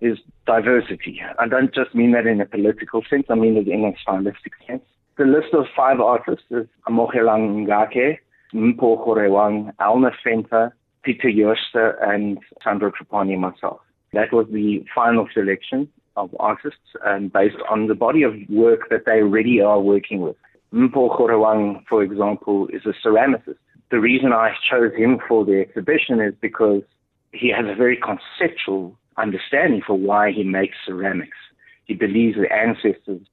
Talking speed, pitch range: 155 wpm, 100-115 Hz